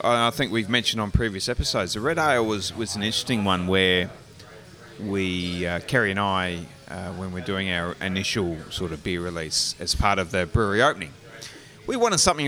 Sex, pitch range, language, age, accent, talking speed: male, 95-125 Hz, English, 30-49, Australian, 190 wpm